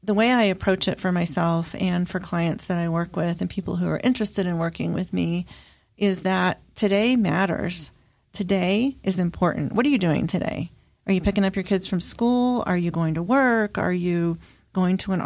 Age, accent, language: 40-59, American, English